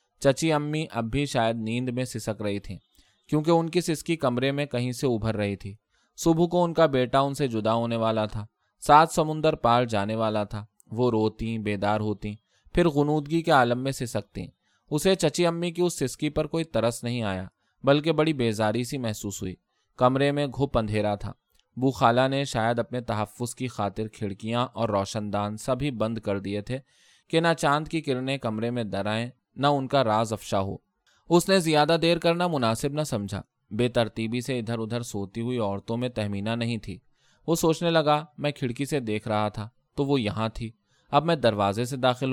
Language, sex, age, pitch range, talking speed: Urdu, male, 20-39, 110-145 Hz, 185 wpm